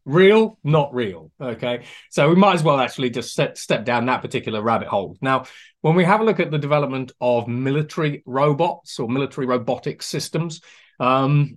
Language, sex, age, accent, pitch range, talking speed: English, male, 30-49, British, 125-160 Hz, 175 wpm